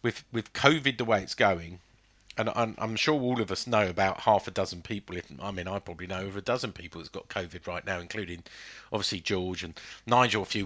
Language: English